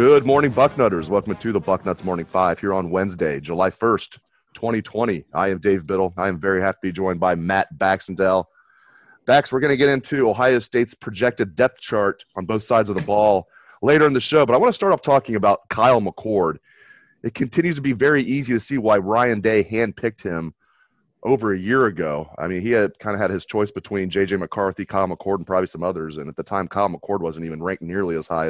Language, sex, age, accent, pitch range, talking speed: English, male, 30-49, American, 95-120 Hz, 225 wpm